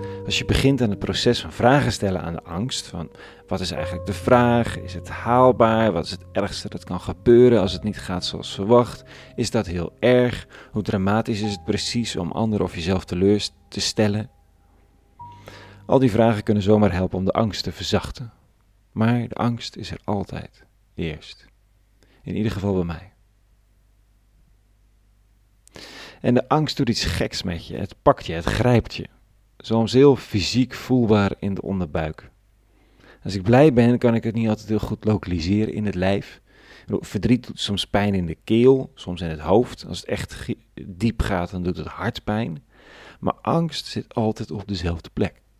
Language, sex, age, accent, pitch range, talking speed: Dutch, male, 40-59, Dutch, 95-115 Hz, 180 wpm